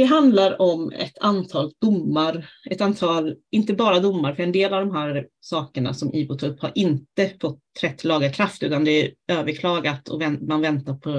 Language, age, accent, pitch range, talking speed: Swedish, 30-49, native, 150-185 Hz, 180 wpm